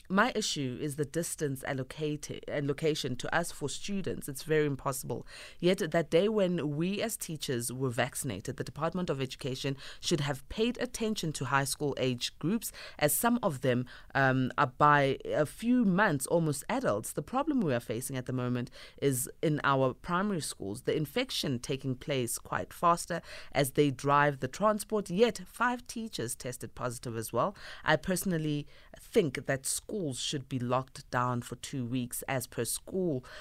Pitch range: 130-160 Hz